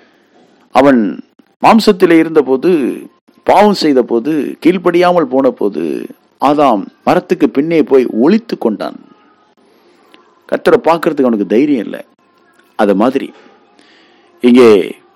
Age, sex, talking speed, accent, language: 50-69, male, 85 wpm, Indian, English